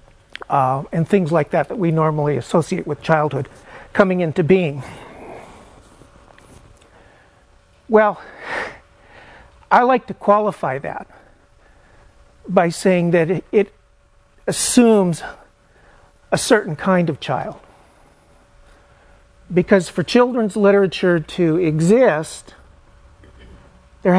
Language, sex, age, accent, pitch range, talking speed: English, male, 50-69, American, 110-185 Hz, 90 wpm